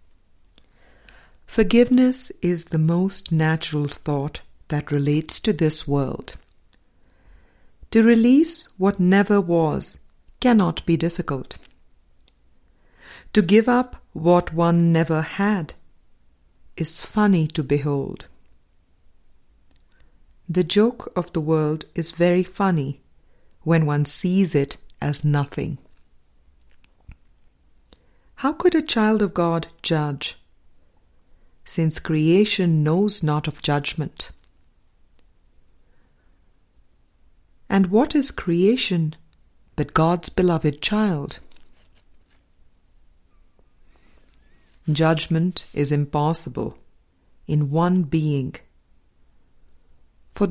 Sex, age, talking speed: female, 50-69, 85 wpm